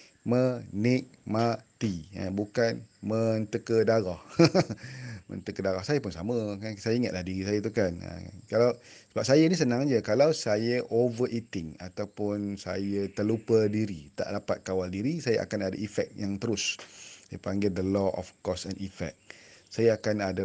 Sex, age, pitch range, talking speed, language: male, 30-49, 100-120 Hz, 145 wpm, Malay